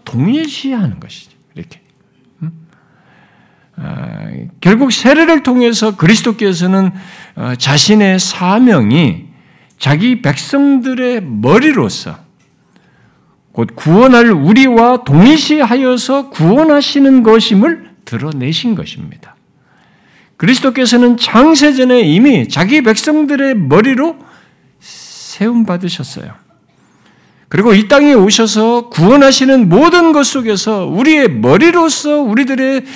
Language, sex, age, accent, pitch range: Korean, male, 50-69, native, 180-270 Hz